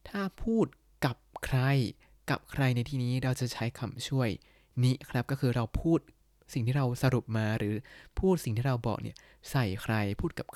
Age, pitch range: 20-39, 115-145 Hz